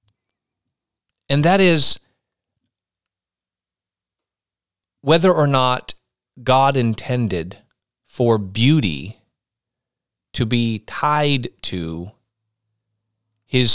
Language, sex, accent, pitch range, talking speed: English, male, American, 100-130 Hz, 65 wpm